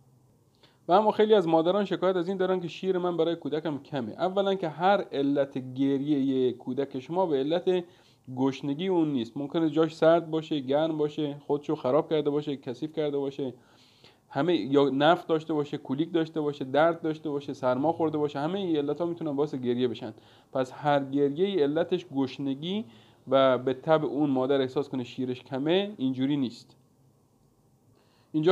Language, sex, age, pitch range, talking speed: Persian, male, 40-59, 130-165 Hz, 170 wpm